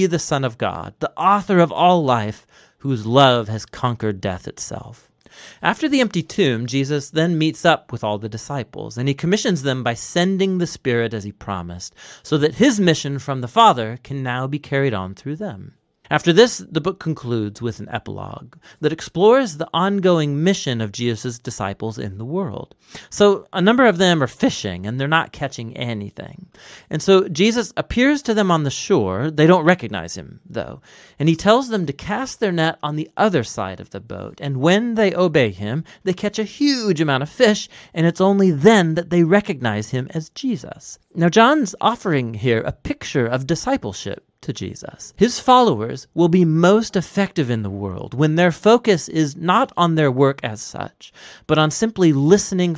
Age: 30-49